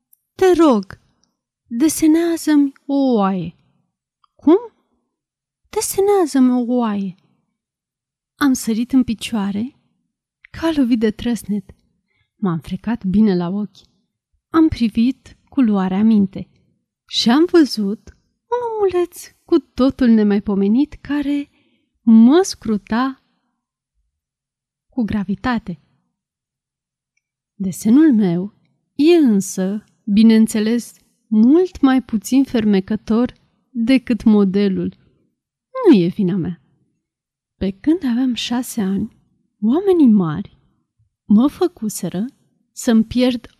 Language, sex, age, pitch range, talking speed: Romanian, female, 30-49, 200-270 Hz, 90 wpm